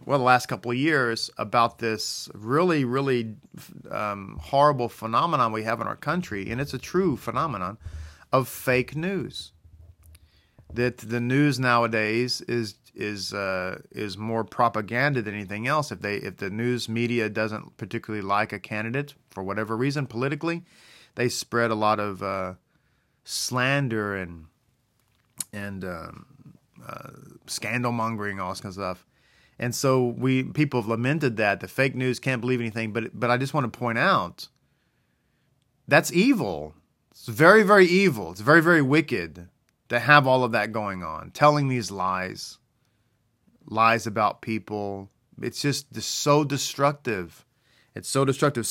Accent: American